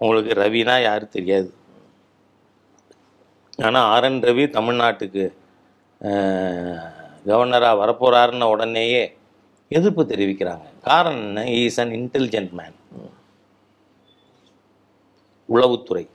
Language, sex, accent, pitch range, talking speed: Tamil, male, native, 100-135 Hz, 70 wpm